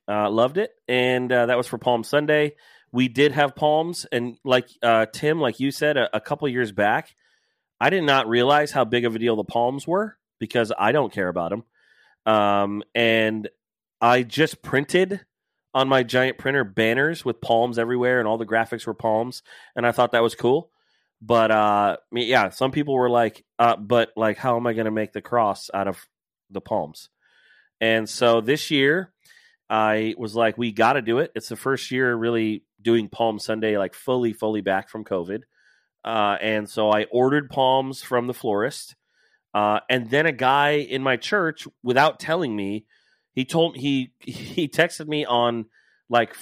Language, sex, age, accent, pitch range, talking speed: English, male, 30-49, American, 110-135 Hz, 190 wpm